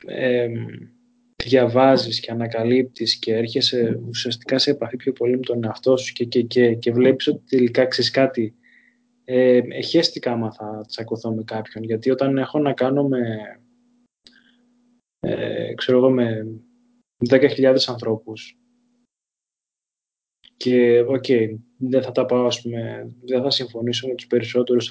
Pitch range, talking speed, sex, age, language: 120-140 Hz, 135 wpm, male, 20-39, Greek